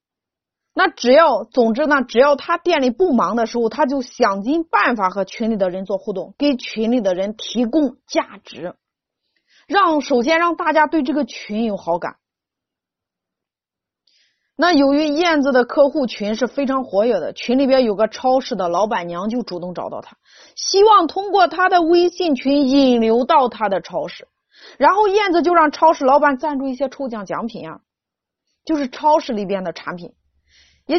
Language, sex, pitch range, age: Chinese, female, 220-320 Hz, 30-49